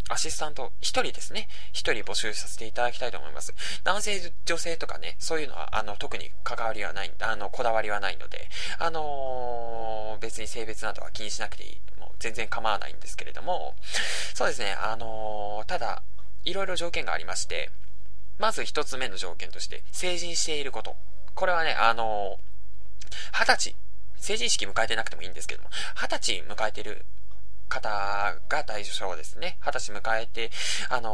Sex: male